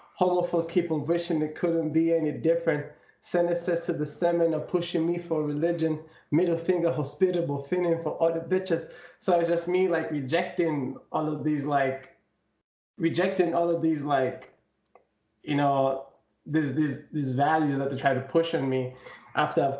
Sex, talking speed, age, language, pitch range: male, 165 wpm, 20-39, English, 140-170 Hz